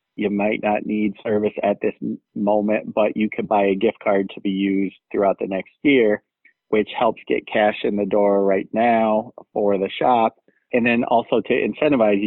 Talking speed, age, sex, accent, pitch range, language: 190 wpm, 30-49, male, American, 95-110 Hz, English